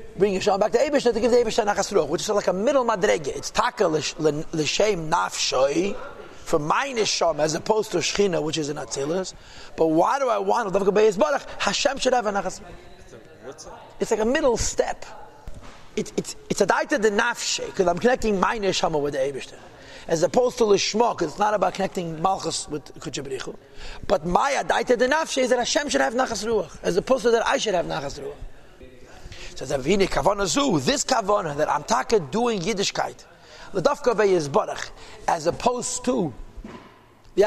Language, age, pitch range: English, 30-49, 185-240 Hz